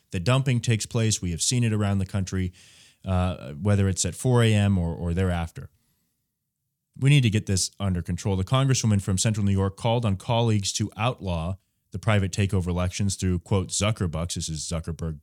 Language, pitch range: English, 95-115 Hz